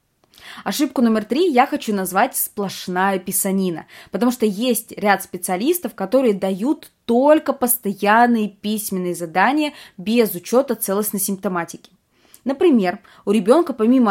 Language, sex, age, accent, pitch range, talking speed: Russian, female, 20-39, native, 185-245 Hz, 115 wpm